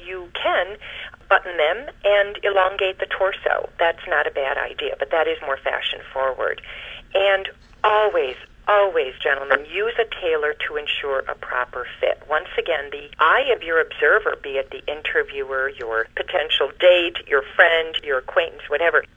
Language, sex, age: English, female, 50-69